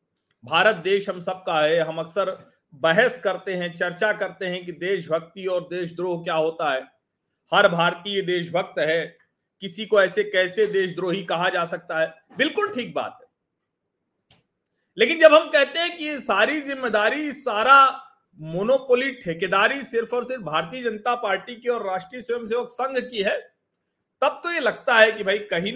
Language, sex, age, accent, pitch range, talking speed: Hindi, male, 40-59, native, 195-285 Hz, 165 wpm